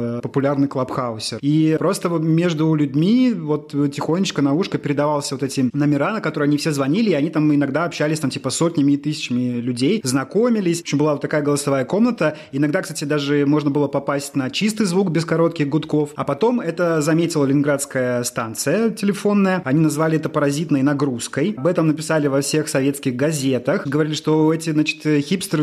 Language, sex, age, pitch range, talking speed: Russian, male, 30-49, 140-160 Hz, 175 wpm